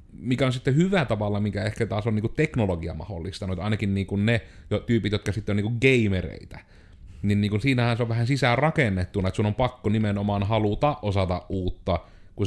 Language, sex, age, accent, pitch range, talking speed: Finnish, male, 30-49, native, 90-110 Hz, 180 wpm